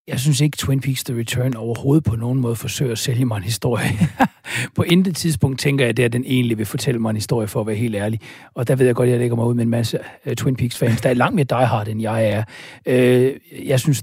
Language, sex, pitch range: Danish, male, 125-155 Hz